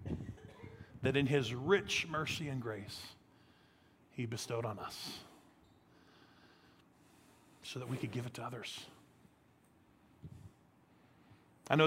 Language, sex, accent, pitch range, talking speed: English, male, American, 115-135 Hz, 105 wpm